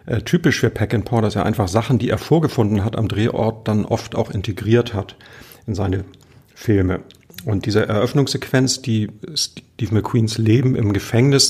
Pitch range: 105-125 Hz